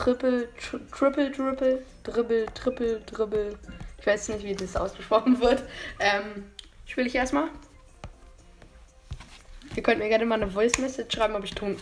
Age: 20-39